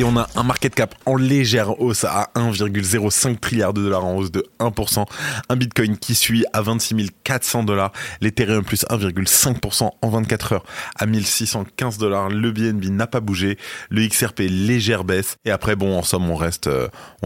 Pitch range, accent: 90-110 Hz, French